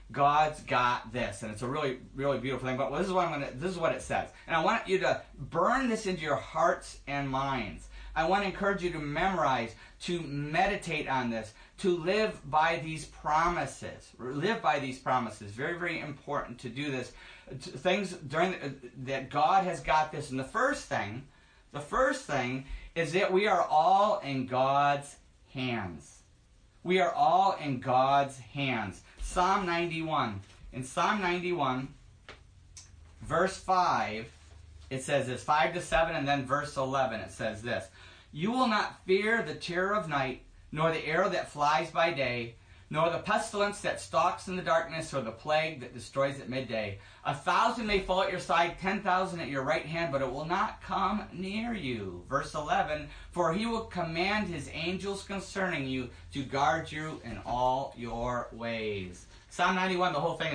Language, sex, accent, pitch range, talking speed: English, male, American, 130-180 Hz, 180 wpm